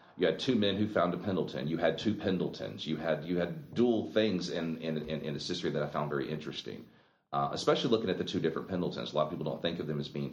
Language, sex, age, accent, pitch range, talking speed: English, male, 40-59, American, 70-80 Hz, 275 wpm